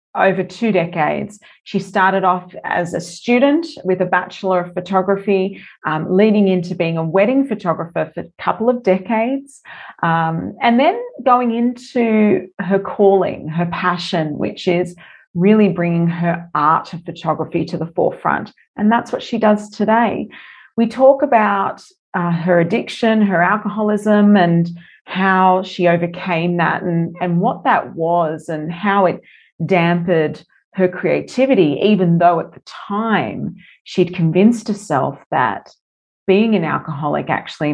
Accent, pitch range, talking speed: Australian, 170-225 Hz, 140 wpm